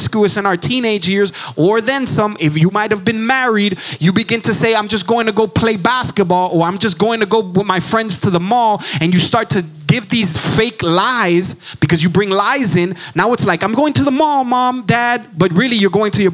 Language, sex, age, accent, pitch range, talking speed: English, male, 20-39, American, 170-225 Hz, 240 wpm